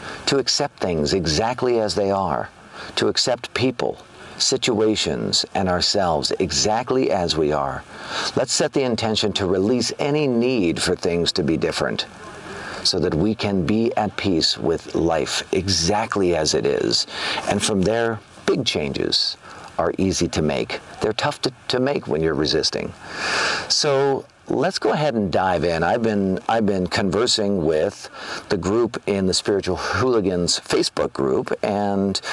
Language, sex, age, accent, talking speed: English, male, 50-69, American, 150 wpm